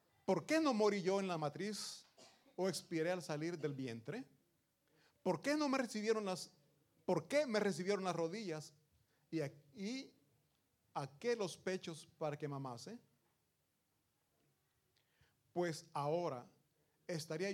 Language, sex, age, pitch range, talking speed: Italian, male, 40-59, 140-185 Hz, 130 wpm